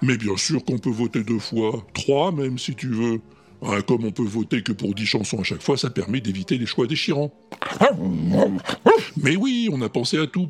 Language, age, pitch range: French, 60-79, 110-150 Hz